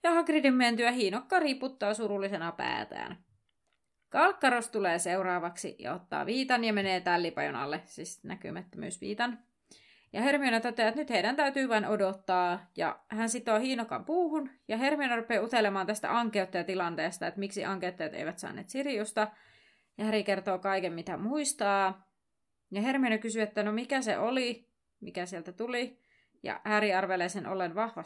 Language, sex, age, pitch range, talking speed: Finnish, female, 20-39, 195-240 Hz, 145 wpm